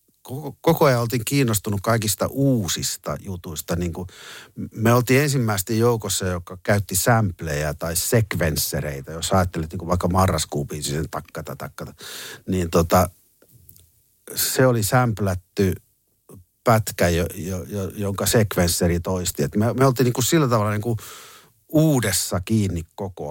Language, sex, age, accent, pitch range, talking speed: Finnish, male, 50-69, native, 90-115 Hz, 125 wpm